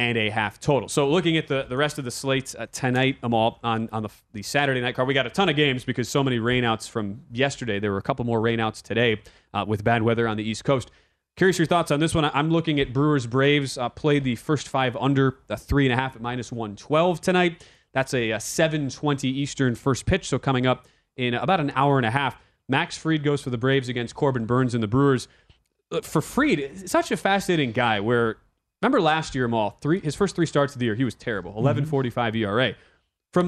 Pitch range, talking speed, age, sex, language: 120-160 Hz, 235 wpm, 30-49, male, English